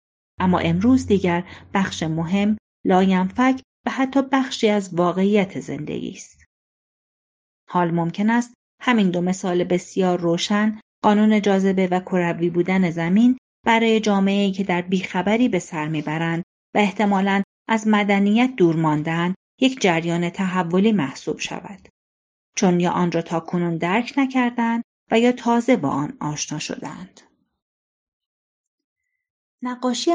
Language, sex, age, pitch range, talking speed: Persian, female, 30-49, 170-225 Hz, 120 wpm